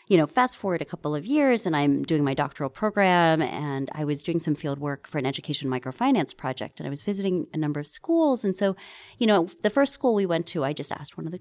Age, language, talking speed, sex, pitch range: 30-49, English, 265 wpm, female, 145-205 Hz